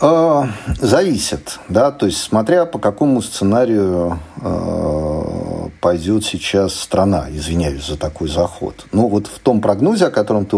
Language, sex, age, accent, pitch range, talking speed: Russian, male, 40-59, native, 85-110 Hz, 130 wpm